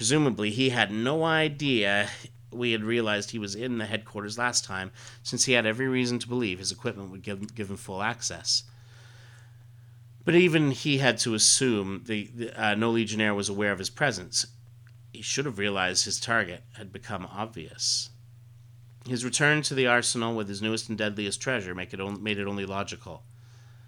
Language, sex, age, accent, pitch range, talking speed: English, male, 40-59, American, 100-120 Hz, 185 wpm